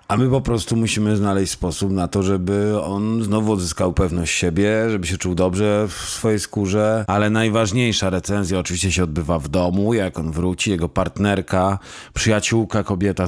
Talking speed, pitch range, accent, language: 165 wpm, 90-105 Hz, native, Polish